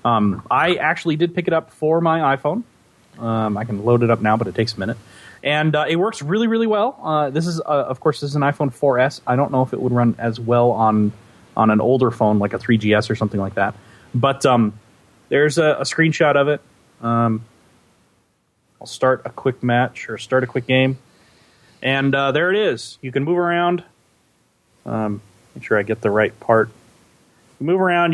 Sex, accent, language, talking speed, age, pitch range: male, American, English, 215 wpm, 30-49, 115-155 Hz